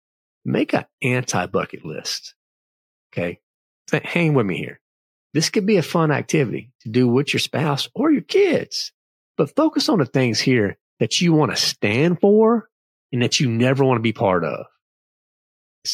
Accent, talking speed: American, 170 wpm